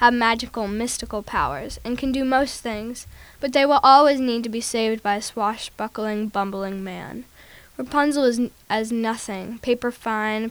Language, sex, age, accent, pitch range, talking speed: English, female, 10-29, American, 210-250 Hz, 160 wpm